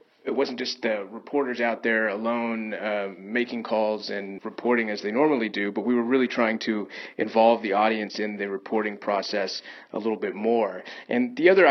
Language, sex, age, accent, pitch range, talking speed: English, male, 30-49, American, 110-130 Hz, 190 wpm